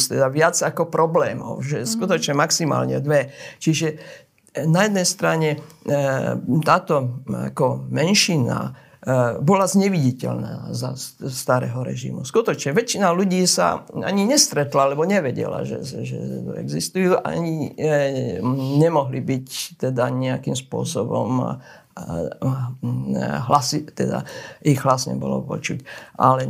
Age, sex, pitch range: 50-69, male, 125-170 Hz